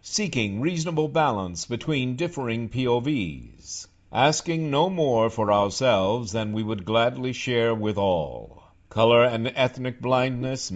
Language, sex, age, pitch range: English, male, 60-79, 95-135 Hz